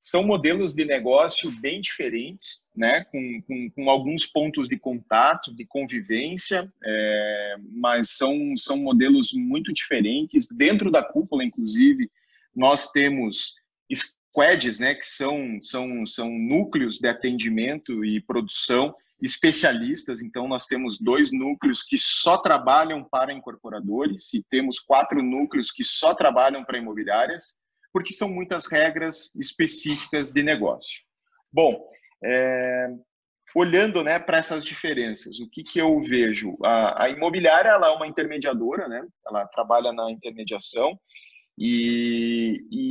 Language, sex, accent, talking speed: Portuguese, male, Brazilian, 130 wpm